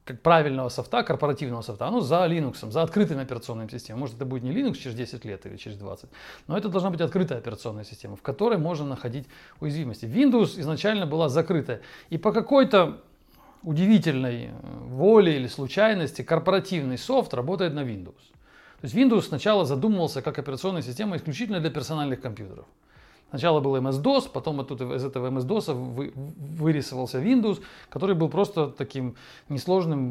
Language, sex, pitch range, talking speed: English, male, 125-180 Hz, 155 wpm